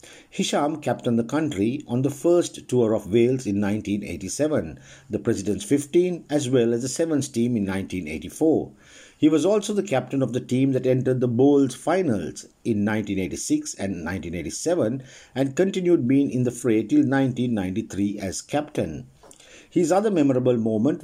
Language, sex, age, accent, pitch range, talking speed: English, male, 60-79, Indian, 110-150 Hz, 155 wpm